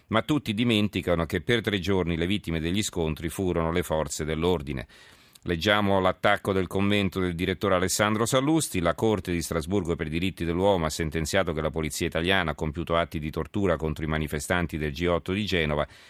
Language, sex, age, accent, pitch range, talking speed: Italian, male, 40-59, native, 80-95 Hz, 185 wpm